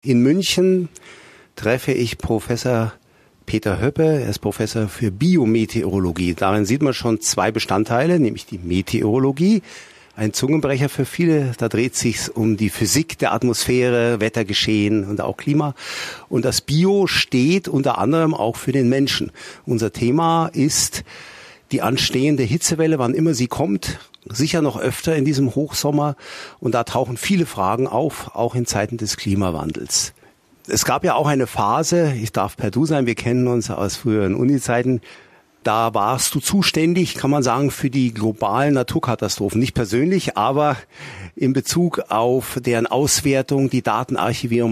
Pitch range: 110-150 Hz